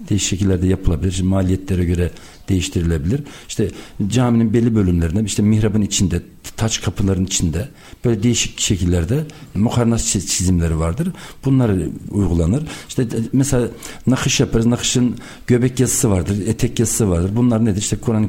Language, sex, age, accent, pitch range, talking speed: Turkish, male, 60-79, native, 95-125 Hz, 130 wpm